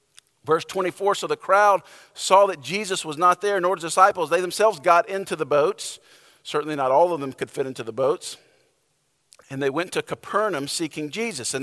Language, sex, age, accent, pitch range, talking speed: English, male, 50-69, American, 155-190 Hz, 195 wpm